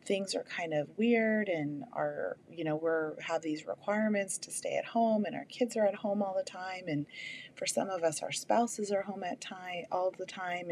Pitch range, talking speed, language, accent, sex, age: 165-215 Hz, 225 wpm, English, American, female, 30-49